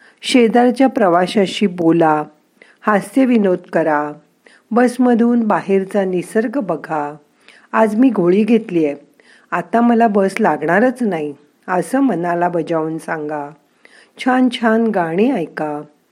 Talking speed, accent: 105 wpm, native